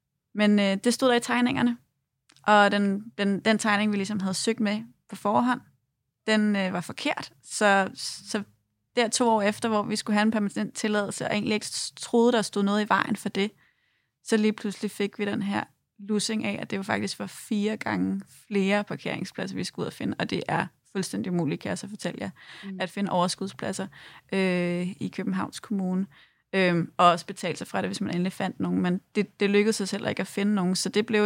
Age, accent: 30-49, native